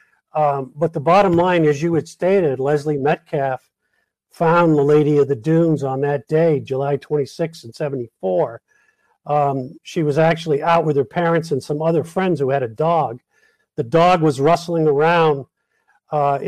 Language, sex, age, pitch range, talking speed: English, male, 50-69, 140-170 Hz, 170 wpm